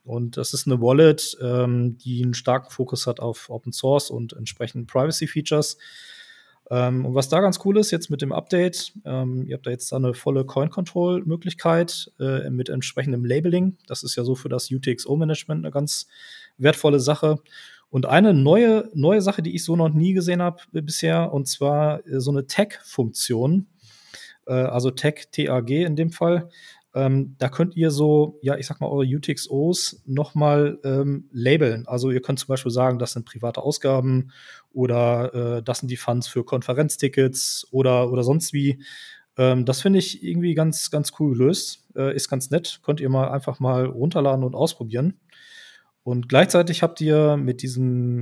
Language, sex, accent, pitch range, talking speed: German, male, German, 125-160 Hz, 170 wpm